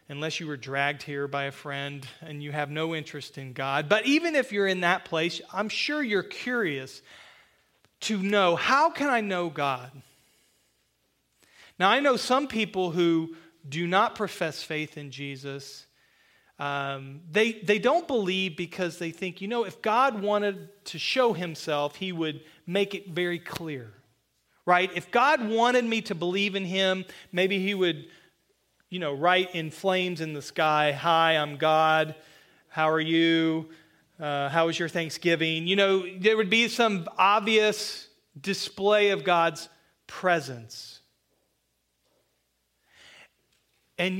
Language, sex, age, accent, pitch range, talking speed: English, male, 40-59, American, 150-200 Hz, 150 wpm